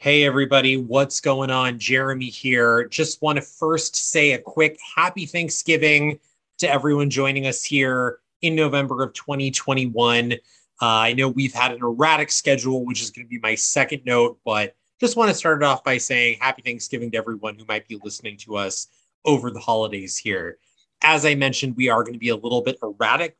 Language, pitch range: English, 120-150 Hz